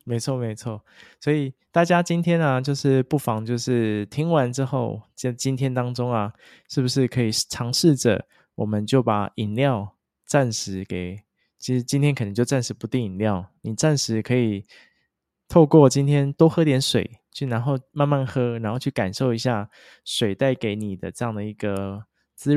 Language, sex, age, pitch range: Chinese, male, 20-39, 105-135 Hz